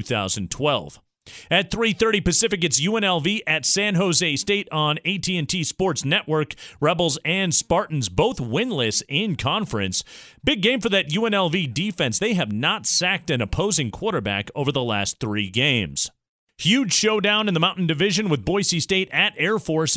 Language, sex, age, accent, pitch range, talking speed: English, male, 40-59, American, 140-195 Hz, 155 wpm